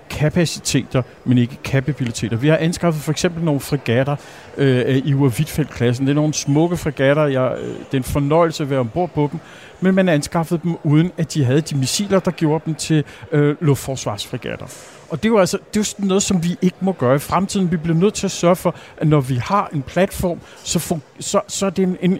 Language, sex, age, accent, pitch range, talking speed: Danish, male, 50-69, native, 140-180 Hz, 225 wpm